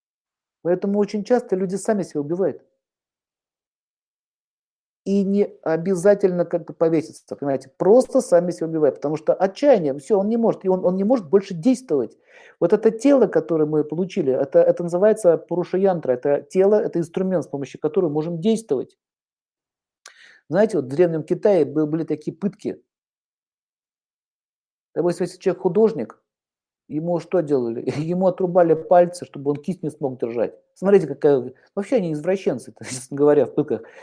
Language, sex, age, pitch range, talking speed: Russian, male, 50-69, 155-200 Hz, 145 wpm